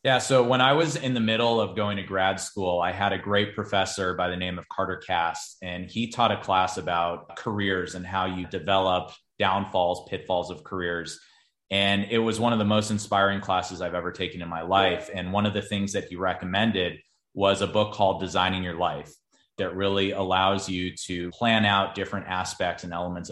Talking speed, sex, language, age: 205 wpm, male, English, 30-49